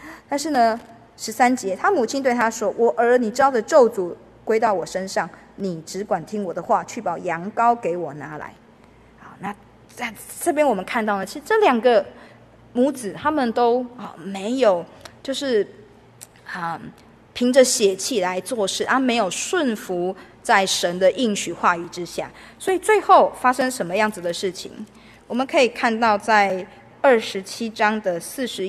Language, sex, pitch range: Chinese, female, 195-255 Hz